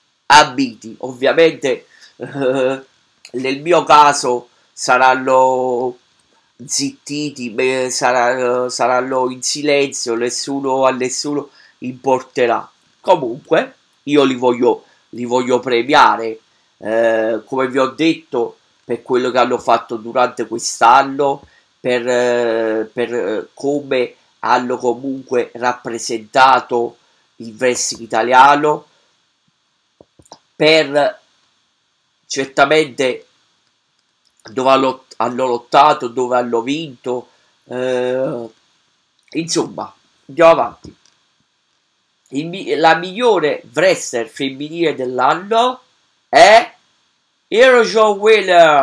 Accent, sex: native, male